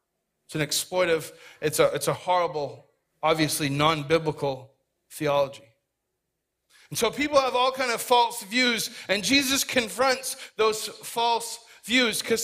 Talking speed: 130 wpm